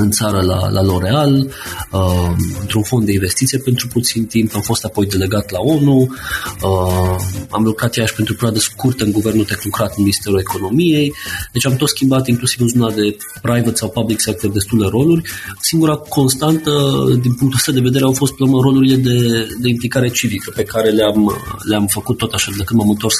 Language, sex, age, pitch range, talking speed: Romanian, male, 30-49, 100-125 Hz, 185 wpm